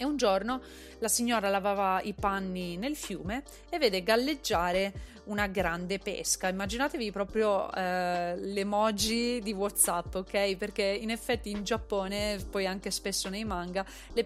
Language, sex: Italian, female